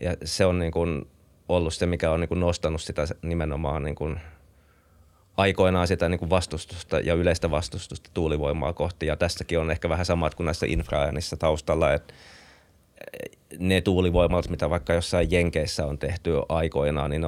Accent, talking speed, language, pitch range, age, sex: native, 165 wpm, Finnish, 75-90 Hz, 20-39, male